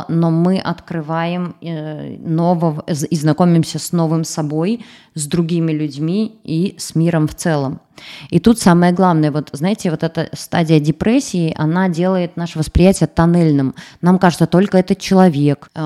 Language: Russian